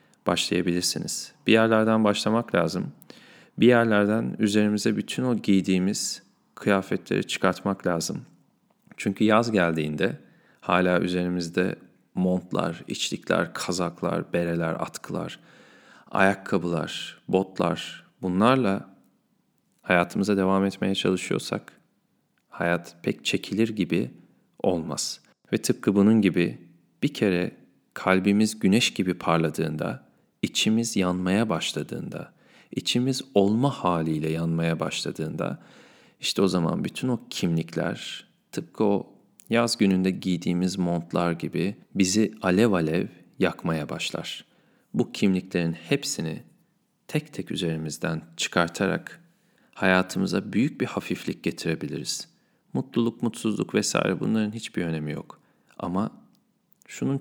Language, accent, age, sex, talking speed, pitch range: Turkish, native, 40-59, male, 100 wpm, 85-110 Hz